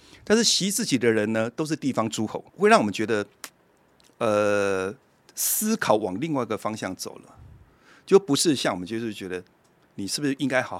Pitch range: 90-125 Hz